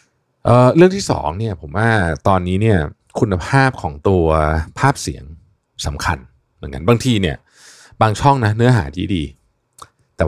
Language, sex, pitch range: Thai, male, 80-110 Hz